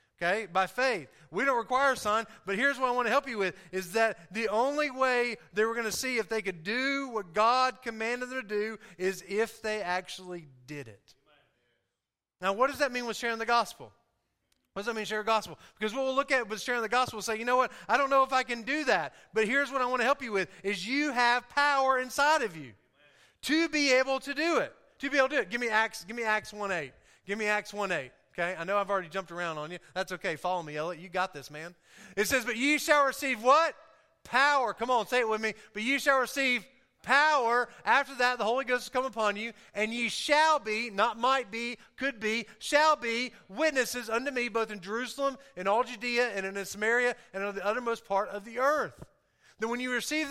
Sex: male